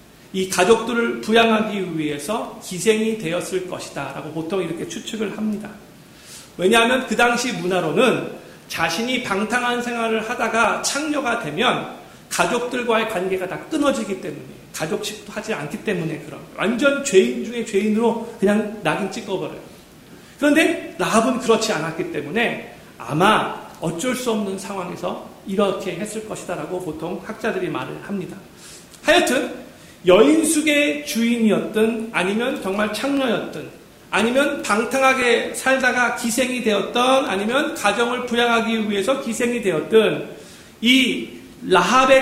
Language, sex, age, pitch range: Korean, male, 40-59, 195-245 Hz